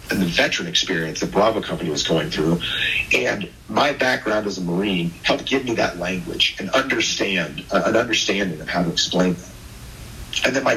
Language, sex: English, male